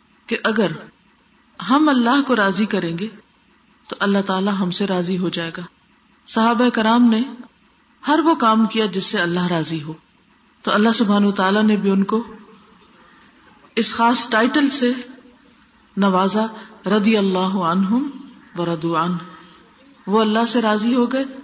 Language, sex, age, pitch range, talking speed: Urdu, female, 40-59, 190-250 Hz, 145 wpm